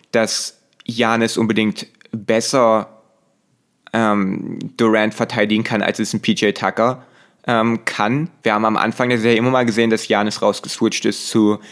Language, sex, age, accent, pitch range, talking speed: German, male, 20-39, German, 110-125 Hz, 155 wpm